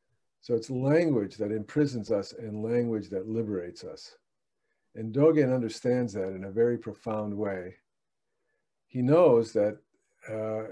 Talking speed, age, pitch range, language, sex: 135 wpm, 50-69, 100-125 Hz, English, male